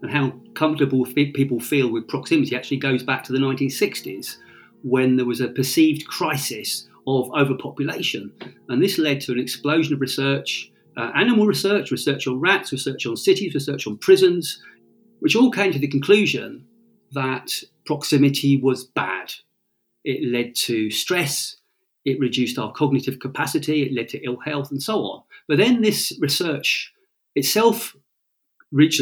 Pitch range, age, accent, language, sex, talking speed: 125-180 Hz, 40-59, British, English, male, 155 wpm